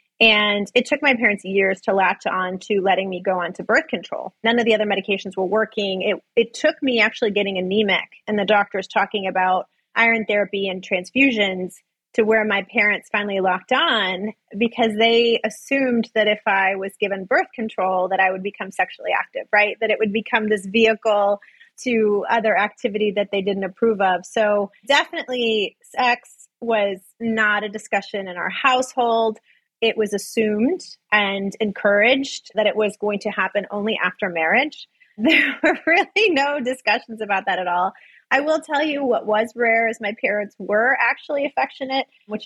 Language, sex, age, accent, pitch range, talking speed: English, female, 30-49, American, 195-235 Hz, 175 wpm